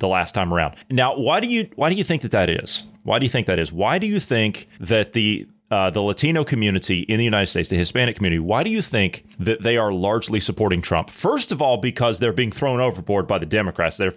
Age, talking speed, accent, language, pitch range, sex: 30-49, 255 wpm, American, English, 100-125 Hz, male